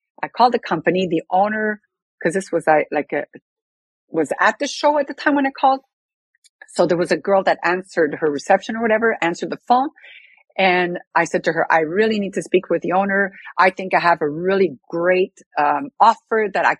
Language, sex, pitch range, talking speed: English, female, 160-225 Hz, 210 wpm